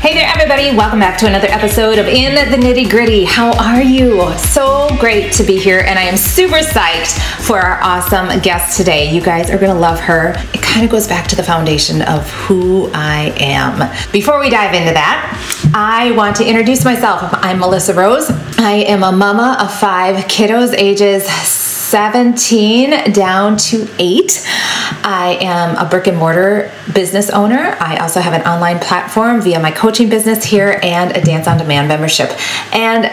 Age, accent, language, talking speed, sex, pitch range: 30-49, American, English, 180 wpm, female, 180-225 Hz